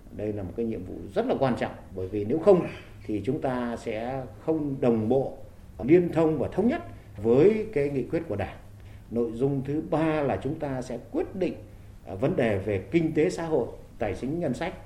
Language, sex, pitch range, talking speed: Vietnamese, male, 100-140 Hz, 215 wpm